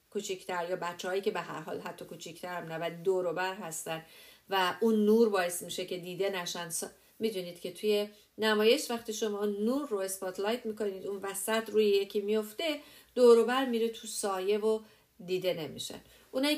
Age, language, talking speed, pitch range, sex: 50-69, English, 160 wpm, 185-225 Hz, female